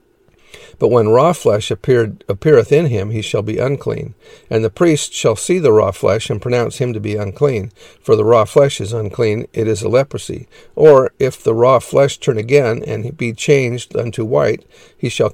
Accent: American